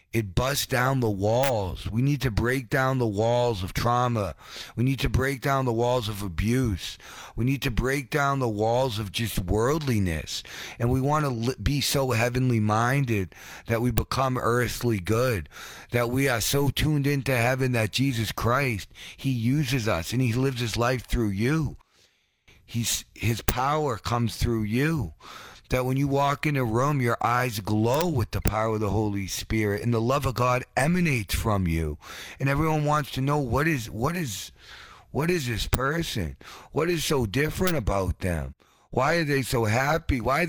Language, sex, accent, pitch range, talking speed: English, male, American, 110-140 Hz, 180 wpm